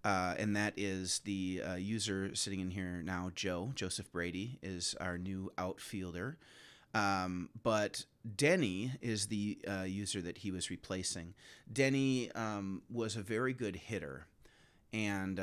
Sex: male